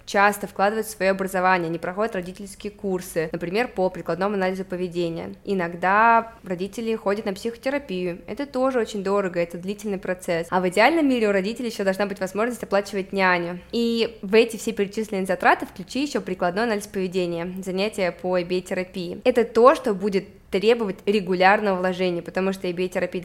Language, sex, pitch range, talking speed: Russian, female, 185-225 Hz, 160 wpm